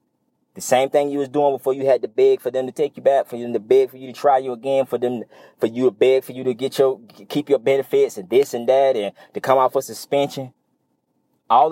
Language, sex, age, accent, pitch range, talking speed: English, male, 20-39, American, 110-145 Hz, 270 wpm